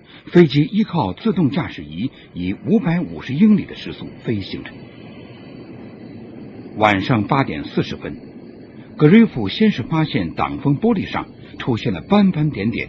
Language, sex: Chinese, male